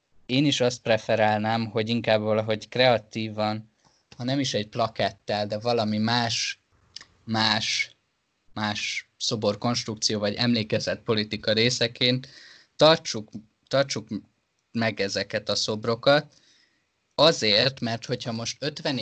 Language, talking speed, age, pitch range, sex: Hungarian, 105 wpm, 20-39, 105-125 Hz, male